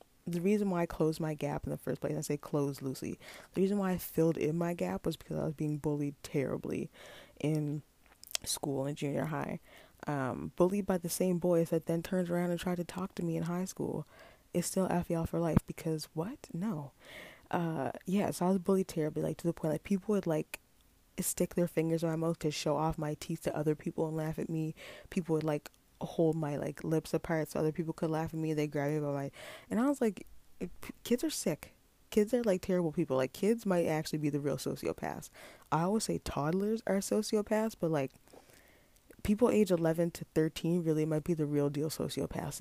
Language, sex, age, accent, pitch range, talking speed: English, female, 20-39, American, 155-180 Hz, 220 wpm